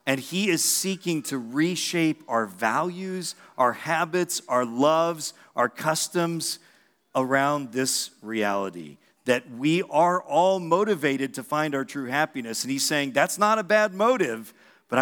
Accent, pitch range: American, 115-155 Hz